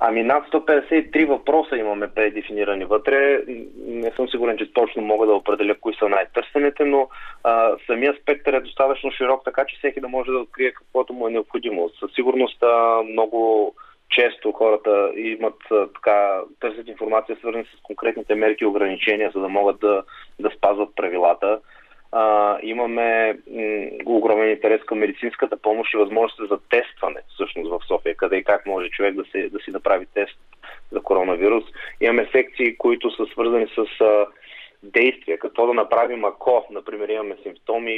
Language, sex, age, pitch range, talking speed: Bulgarian, male, 20-39, 105-130 Hz, 160 wpm